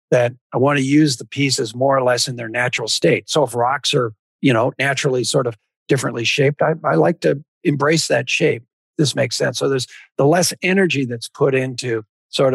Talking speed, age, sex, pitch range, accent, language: 210 wpm, 50-69, male, 125-155 Hz, American, English